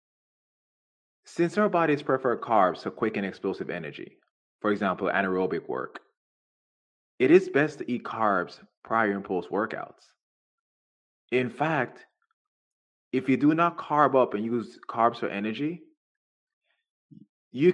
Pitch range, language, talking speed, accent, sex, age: 100-160 Hz, English, 125 wpm, American, male, 20-39